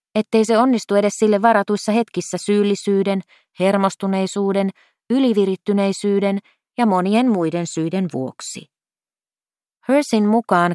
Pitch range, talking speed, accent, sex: 190-220 Hz, 95 wpm, native, female